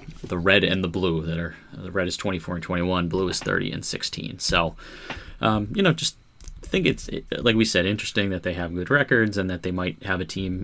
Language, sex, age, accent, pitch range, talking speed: English, male, 30-49, American, 90-105 Hz, 230 wpm